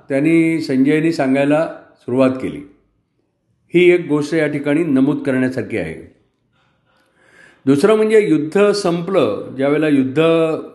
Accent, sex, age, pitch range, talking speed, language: native, male, 50-69, 140-185 Hz, 105 wpm, Marathi